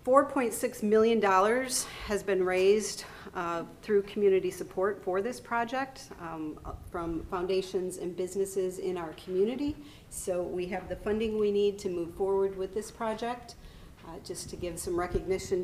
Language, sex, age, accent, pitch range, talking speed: English, female, 40-59, American, 180-210 Hz, 145 wpm